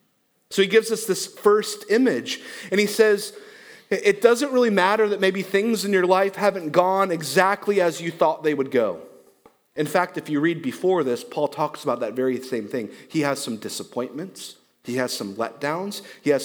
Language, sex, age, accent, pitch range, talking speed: English, male, 30-49, American, 130-195 Hz, 195 wpm